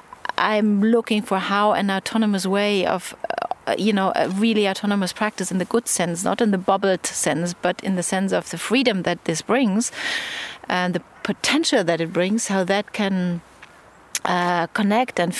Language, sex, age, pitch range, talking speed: English, female, 30-49, 190-230 Hz, 175 wpm